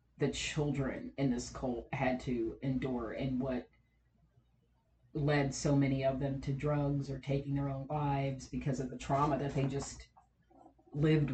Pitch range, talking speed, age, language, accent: 145-190 Hz, 160 wpm, 40-59, English, American